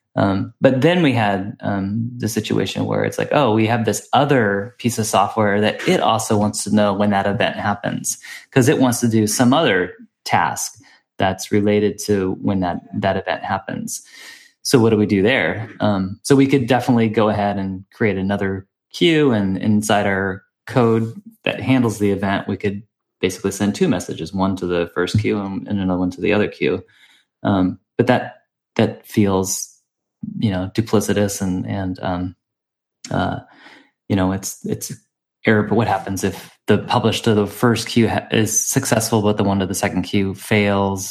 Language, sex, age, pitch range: English, male, 20-39, 100-115 Hz